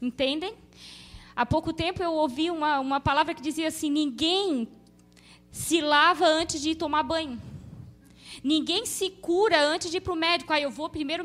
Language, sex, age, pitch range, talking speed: Portuguese, female, 20-39, 265-355 Hz, 180 wpm